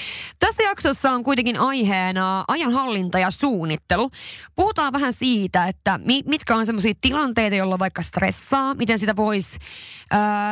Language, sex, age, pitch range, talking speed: Finnish, female, 20-39, 185-235 Hz, 130 wpm